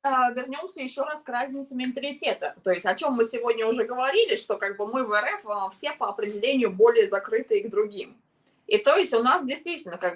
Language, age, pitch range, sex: Russian, 20-39, 195-295 Hz, female